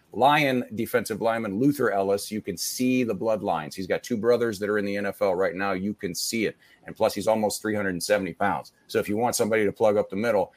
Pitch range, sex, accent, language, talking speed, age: 100-120 Hz, male, American, English, 235 wpm, 40-59